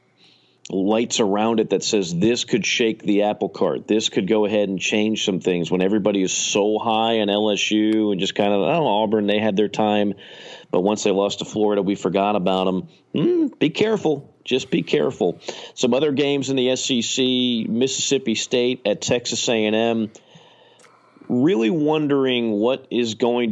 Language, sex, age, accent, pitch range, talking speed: English, male, 40-59, American, 100-125 Hz, 180 wpm